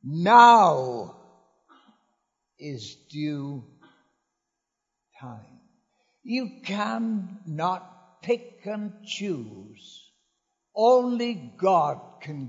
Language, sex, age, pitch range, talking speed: English, male, 60-79, 145-225 Hz, 60 wpm